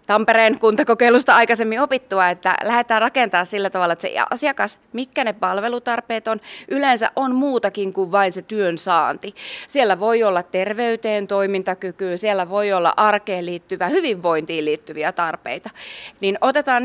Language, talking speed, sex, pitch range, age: Finnish, 140 wpm, female, 165-220 Hz, 30-49